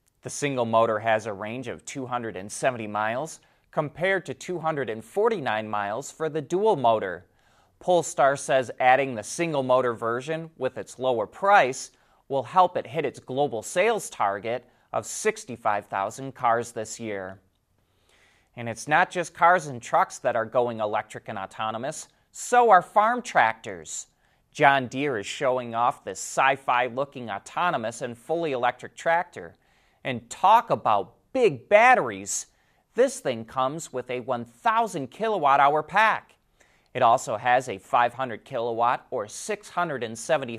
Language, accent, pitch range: English, American, 115-160 Hz